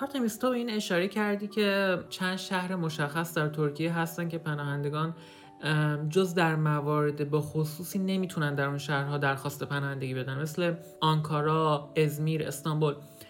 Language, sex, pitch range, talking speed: English, male, 155-195 Hz, 130 wpm